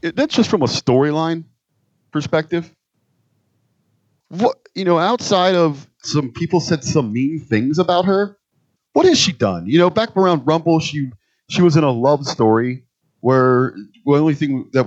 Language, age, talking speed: English, 30-49, 160 wpm